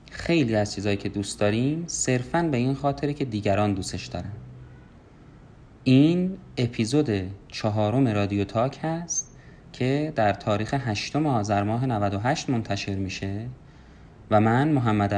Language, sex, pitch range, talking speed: Persian, male, 100-130 Hz, 125 wpm